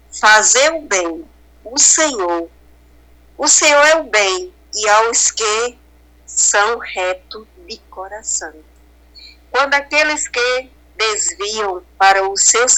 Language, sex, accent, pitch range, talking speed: Portuguese, female, Brazilian, 160-265 Hz, 115 wpm